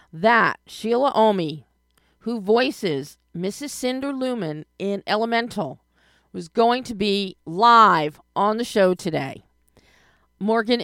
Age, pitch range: 40-59, 170-225 Hz